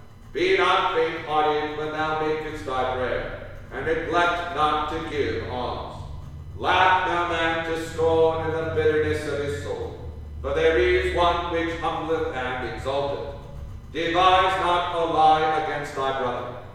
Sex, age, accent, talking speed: male, 50-69, American, 145 wpm